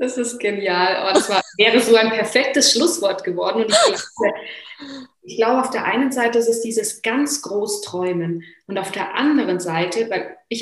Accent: German